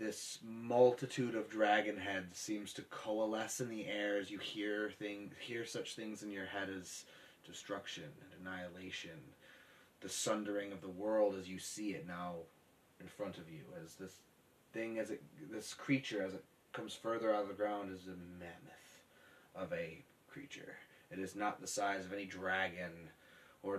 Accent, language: American, English